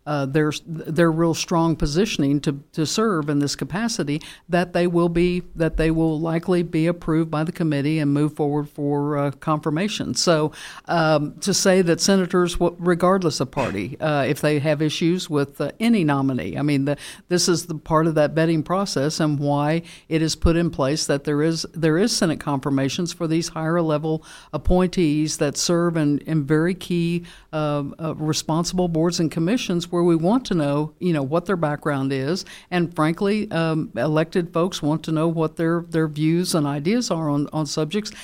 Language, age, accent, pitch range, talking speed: English, 60-79, American, 150-175 Hz, 190 wpm